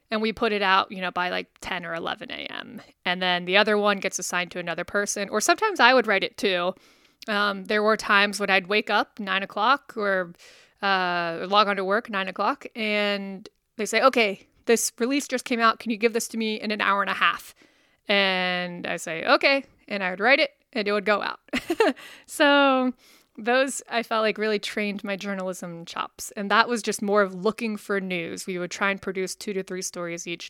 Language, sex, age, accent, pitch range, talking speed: English, female, 20-39, American, 195-235 Hz, 220 wpm